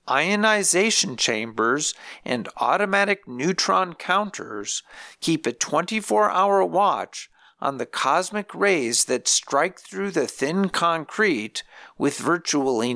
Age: 50-69